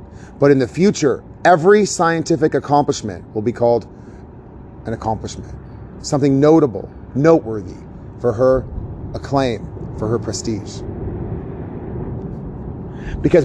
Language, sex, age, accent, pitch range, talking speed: English, male, 30-49, American, 95-140 Hz, 100 wpm